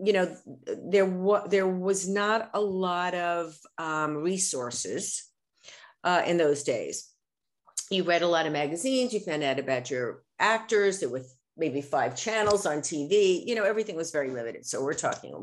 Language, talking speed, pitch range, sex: English, 170 wpm, 155-205 Hz, female